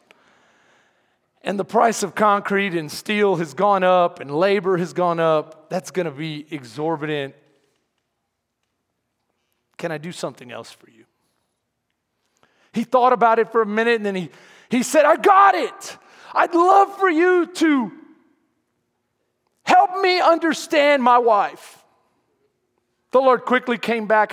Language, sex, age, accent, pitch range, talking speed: English, male, 40-59, American, 200-300 Hz, 140 wpm